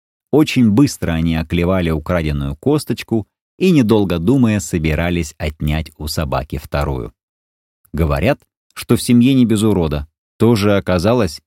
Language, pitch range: Russian, 80-120 Hz